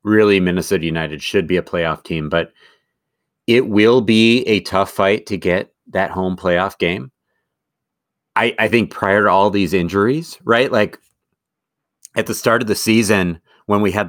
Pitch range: 85-105 Hz